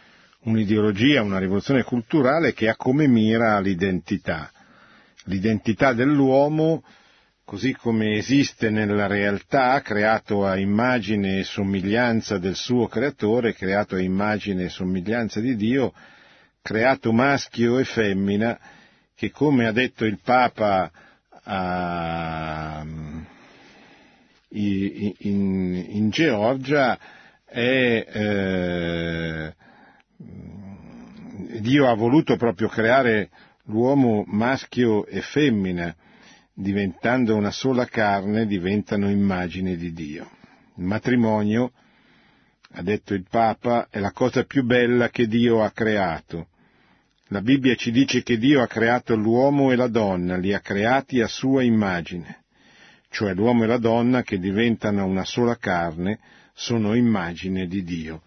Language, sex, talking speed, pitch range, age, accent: Italian, male, 115 wpm, 95-120 Hz, 50-69, native